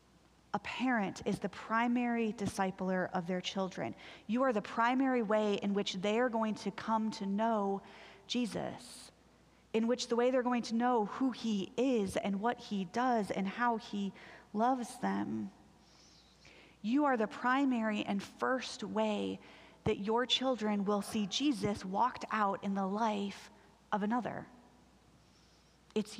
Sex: female